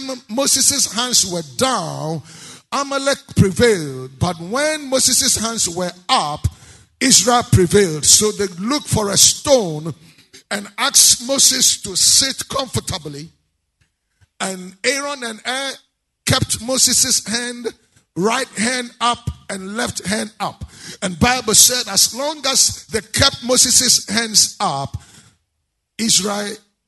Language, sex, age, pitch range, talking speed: English, male, 50-69, 170-265 Hz, 115 wpm